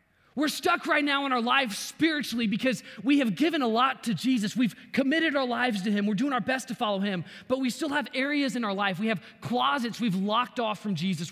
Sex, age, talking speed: male, 20-39, 240 wpm